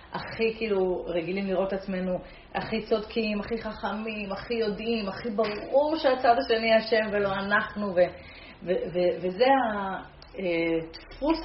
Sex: female